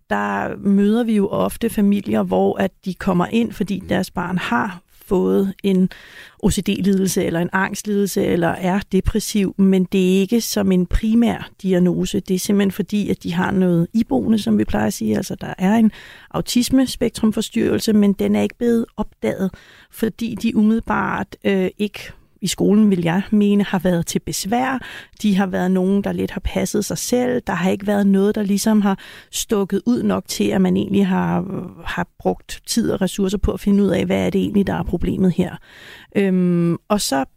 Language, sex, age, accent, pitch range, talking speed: Danish, female, 40-59, native, 185-220 Hz, 190 wpm